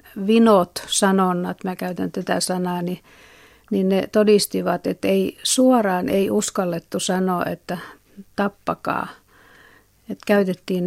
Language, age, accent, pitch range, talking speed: Finnish, 50-69, native, 180-200 Hz, 110 wpm